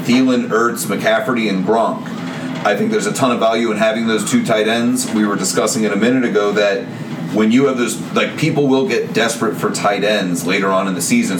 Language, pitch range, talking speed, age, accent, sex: English, 105-145 Hz, 225 wpm, 30-49, American, male